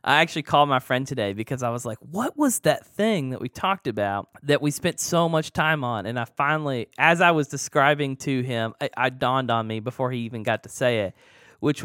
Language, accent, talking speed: English, American, 240 wpm